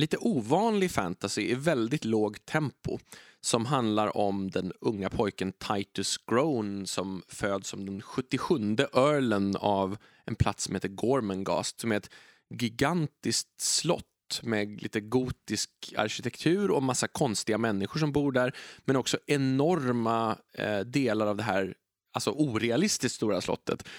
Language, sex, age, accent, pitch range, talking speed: Swedish, male, 20-39, native, 105-140 Hz, 135 wpm